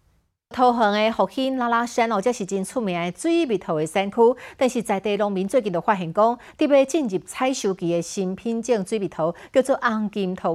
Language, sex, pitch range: Chinese, female, 185-240 Hz